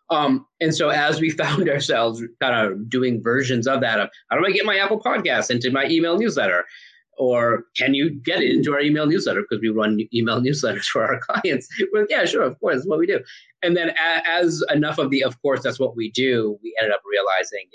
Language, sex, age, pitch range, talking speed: English, male, 30-49, 115-175 Hz, 230 wpm